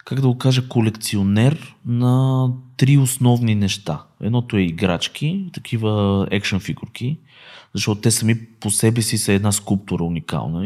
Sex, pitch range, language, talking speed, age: male, 95-125 Hz, Bulgarian, 140 wpm, 20-39